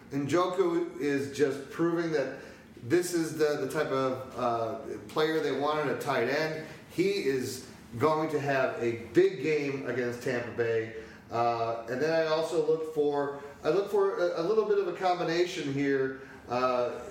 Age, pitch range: 40-59, 135-175 Hz